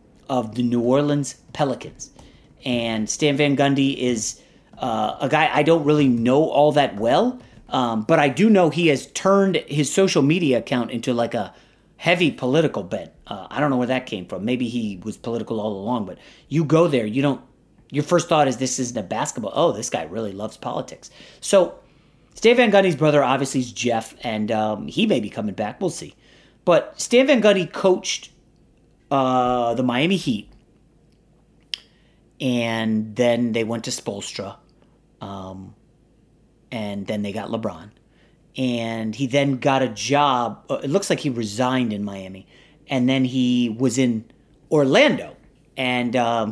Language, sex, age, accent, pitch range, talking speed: English, male, 30-49, American, 115-150 Hz, 170 wpm